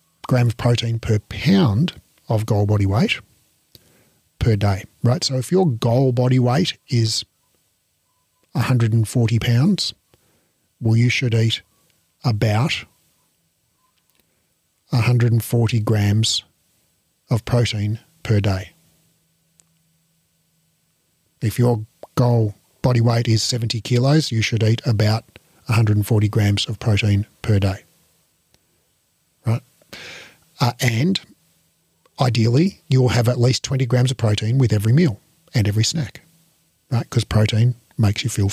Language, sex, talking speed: English, male, 115 wpm